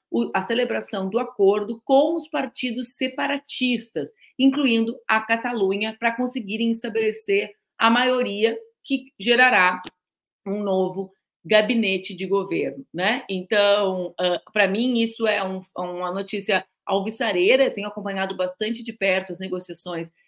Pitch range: 190-240 Hz